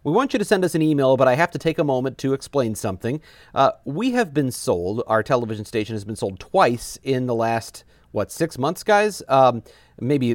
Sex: male